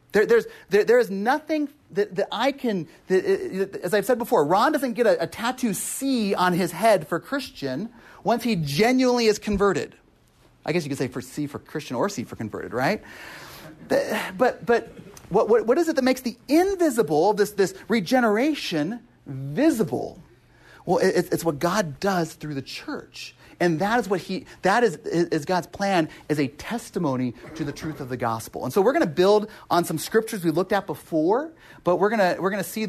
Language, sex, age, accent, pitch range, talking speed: English, male, 30-49, American, 150-225 Hz, 200 wpm